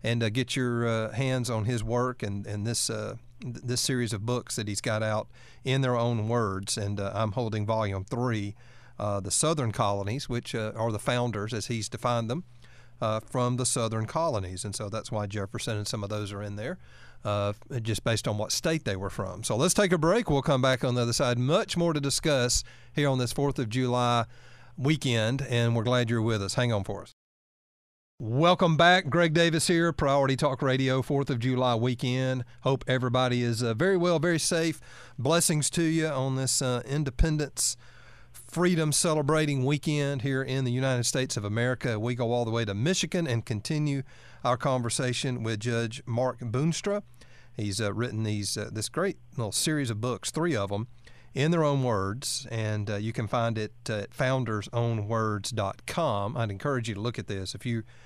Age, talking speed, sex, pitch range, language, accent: 40-59, 195 wpm, male, 110-135 Hz, English, American